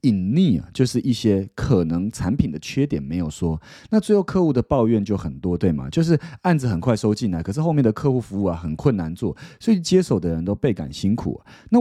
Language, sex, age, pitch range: Chinese, male, 30-49, 95-150 Hz